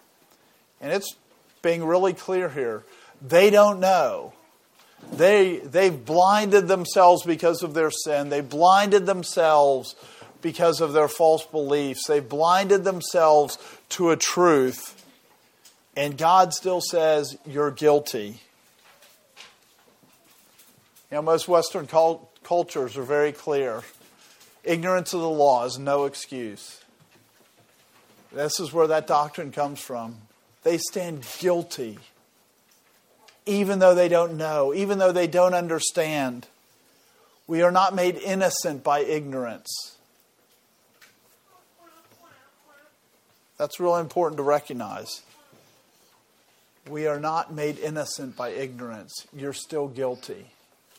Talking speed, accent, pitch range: 110 wpm, American, 145-180 Hz